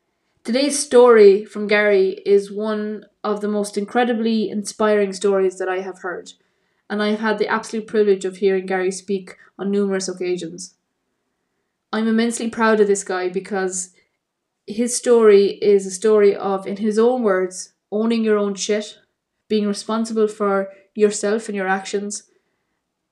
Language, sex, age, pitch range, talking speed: English, female, 20-39, 195-220 Hz, 150 wpm